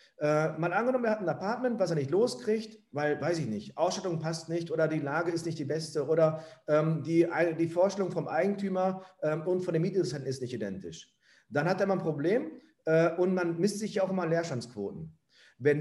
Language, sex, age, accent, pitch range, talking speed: German, male, 40-59, German, 160-220 Hz, 215 wpm